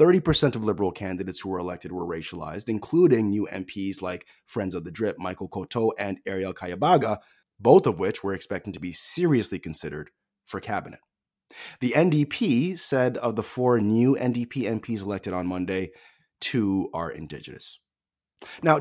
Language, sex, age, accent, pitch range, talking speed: English, male, 20-39, American, 90-130 Hz, 155 wpm